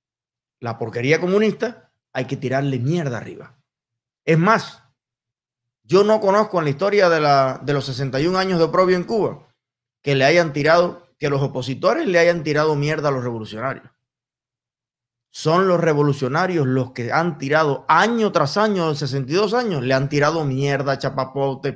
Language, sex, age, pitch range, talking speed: Spanish, male, 20-39, 130-175 Hz, 155 wpm